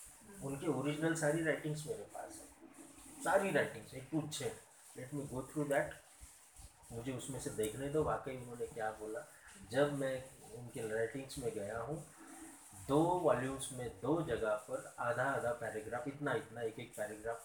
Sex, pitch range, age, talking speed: male, 120-150 Hz, 30-49, 160 wpm